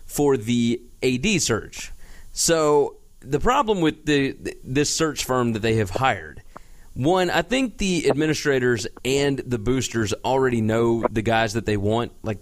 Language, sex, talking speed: English, male, 155 wpm